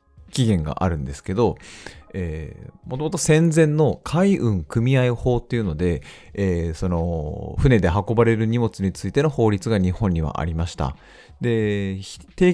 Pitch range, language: 85-135 Hz, Japanese